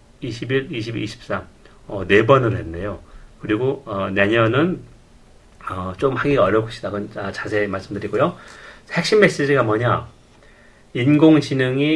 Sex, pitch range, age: male, 110-140 Hz, 40-59